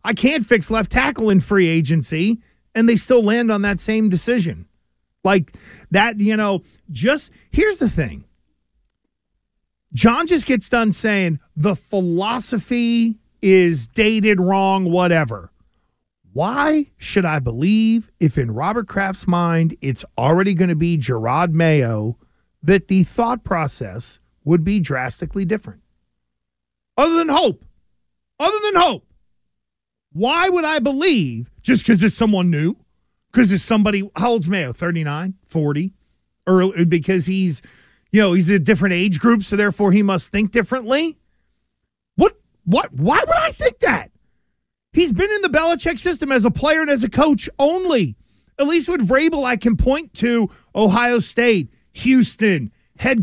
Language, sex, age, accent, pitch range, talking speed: English, male, 50-69, American, 165-245 Hz, 150 wpm